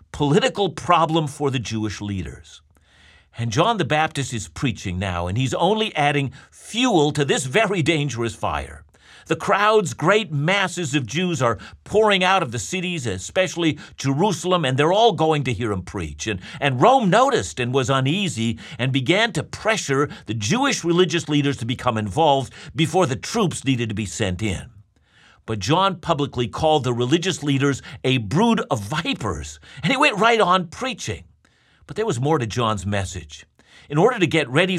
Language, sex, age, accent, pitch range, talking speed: English, male, 50-69, American, 110-170 Hz, 170 wpm